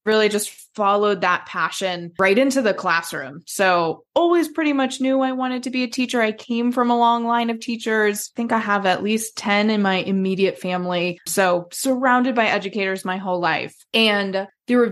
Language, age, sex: English, 20-39, female